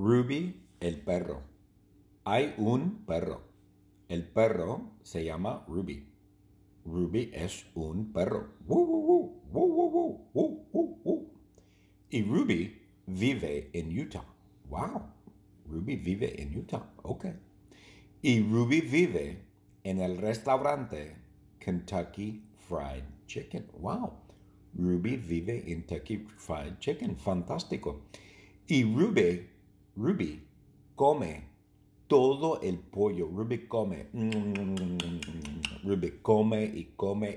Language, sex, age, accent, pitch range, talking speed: English, male, 60-79, American, 90-110 Hz, 100 wpm